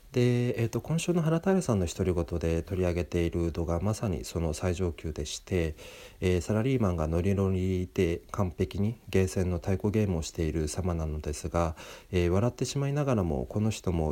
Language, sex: Japanese, male